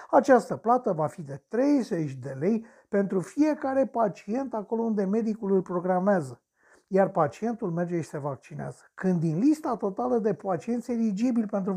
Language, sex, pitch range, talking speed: Romanian, male, 175-235 Hz, 155 wpm